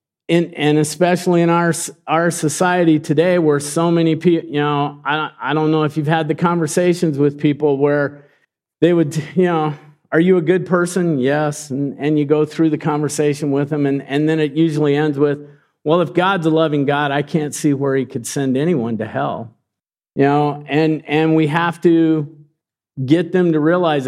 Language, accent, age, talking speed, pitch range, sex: English, American, 50-69, 195 wpm, 135-160 Hz, male